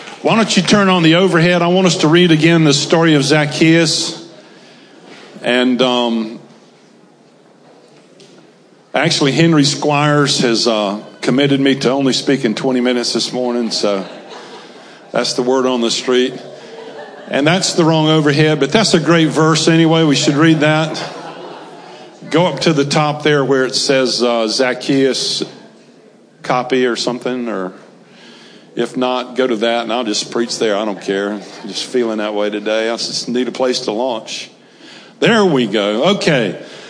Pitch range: 125-170 Hz